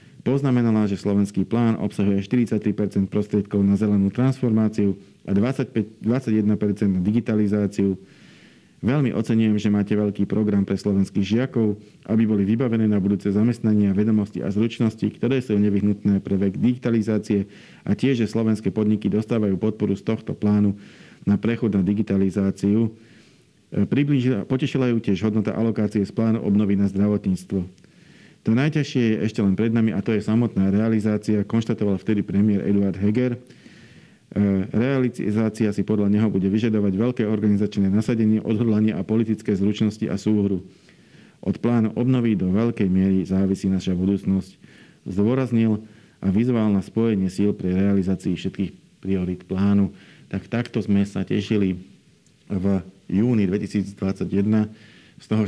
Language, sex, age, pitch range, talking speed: Slovak, male, 50-69, 100-110 Hz, 135 wpm